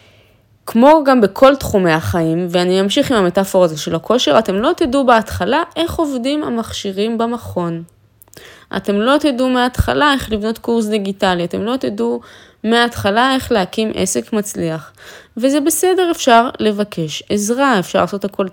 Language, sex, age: Hebrew, female, 20-39